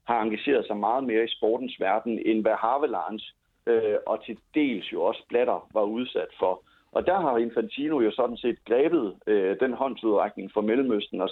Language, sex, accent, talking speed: Danish, male, native, 185 wpm